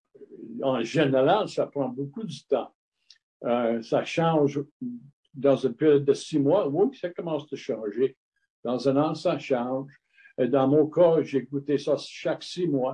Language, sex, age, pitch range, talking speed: French, male, 60-79, 125-155 Hz, 160 wpm